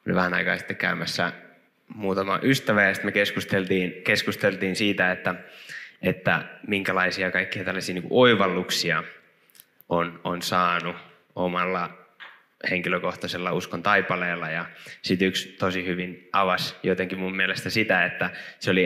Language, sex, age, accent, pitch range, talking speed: Finnish, male, 20-39, native, 90-110 Hz, 120 wpm